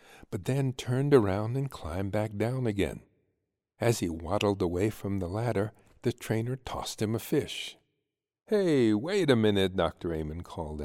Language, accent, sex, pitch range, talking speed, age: English, American, male, 95-130 Hz, 160 wpm, 60-79